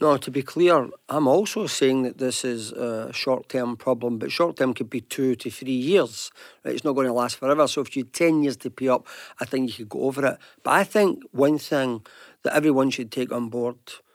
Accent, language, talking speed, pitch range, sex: British, English, 230 wpm, 130-150 Hz, male